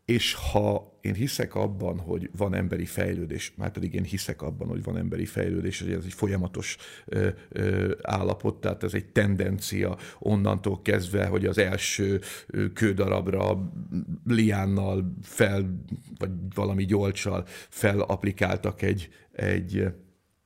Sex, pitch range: male, 95-110 Hz